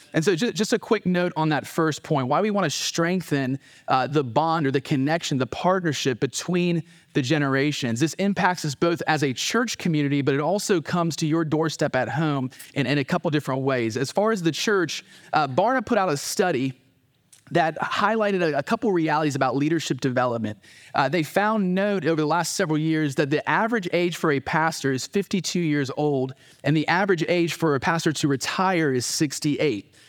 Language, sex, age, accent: English, male, 30-49, American